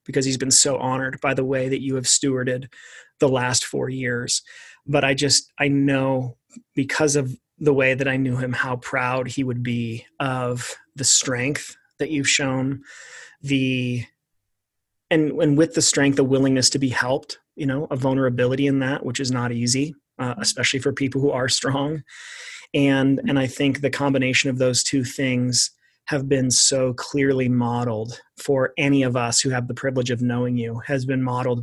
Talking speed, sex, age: 185 wpm, male, 30-49